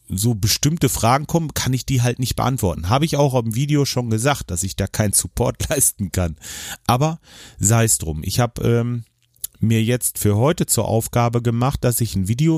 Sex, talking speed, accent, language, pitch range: male, 200 wpm, German, German, 105-125 Hz